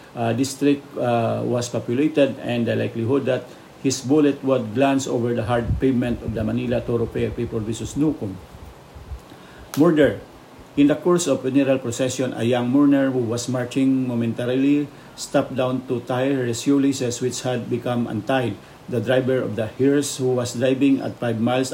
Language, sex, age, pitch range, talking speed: English, male, 50-69, 115-135 Hz, 170 wpm